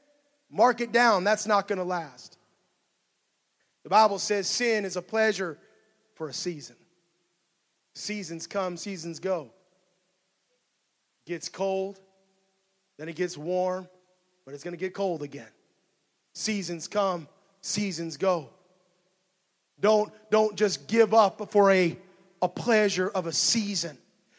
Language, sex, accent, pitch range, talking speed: English, male, American, 185-220 Hz, 125 wpm